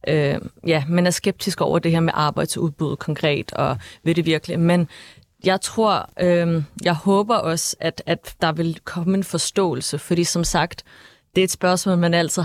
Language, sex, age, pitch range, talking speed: Danish, female, 30-49, 155-180 Hz, 190 wpm